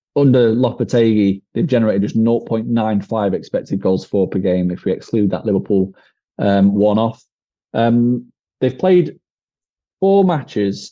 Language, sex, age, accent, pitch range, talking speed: English, male, 30-49, British, 100-125 Hz, 120 wpm